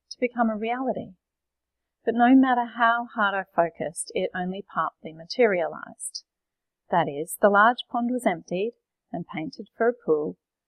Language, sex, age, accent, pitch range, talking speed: English, female, 40-59, Australian, 170-240 Hz, 145 wpm